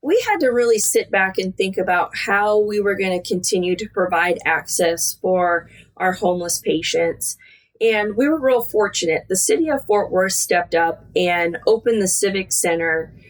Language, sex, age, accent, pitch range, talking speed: English, female, 20-39, American, 175-220 Hz, 170 wpm